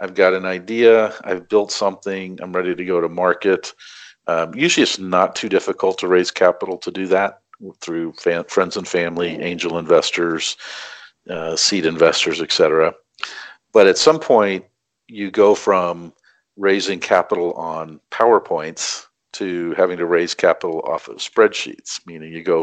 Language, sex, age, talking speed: English, male, 50-69, 155 wpm